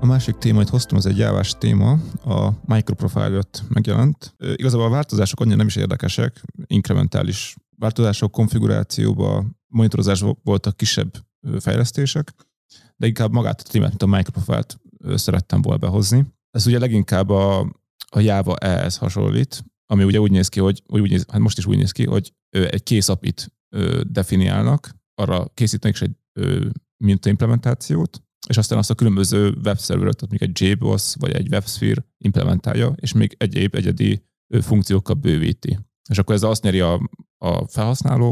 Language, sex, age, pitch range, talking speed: Hungarian, male, 30-49, 100-120 Hz, 150 wpm